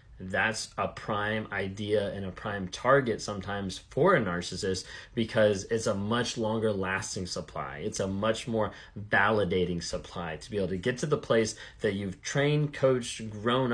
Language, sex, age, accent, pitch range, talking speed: English, male, 20-39, American, 95-120 Hz, 165 wpm